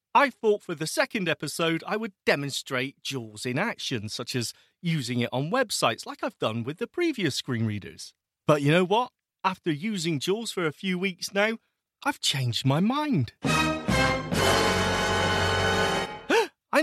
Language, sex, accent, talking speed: English, male, British, 155 wpm